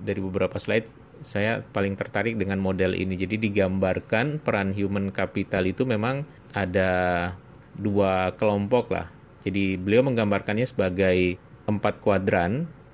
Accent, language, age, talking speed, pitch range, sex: Indonesian, English, 30-49, 120 wpm, 100-125 Hz, male